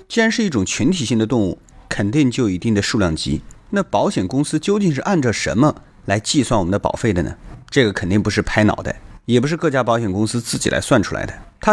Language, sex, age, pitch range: Chinese, male, 30-49, 105-155 Hz